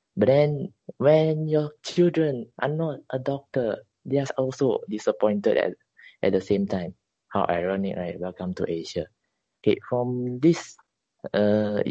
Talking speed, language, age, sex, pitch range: 140 wpm, English, 20-39, male, 95-135 Hz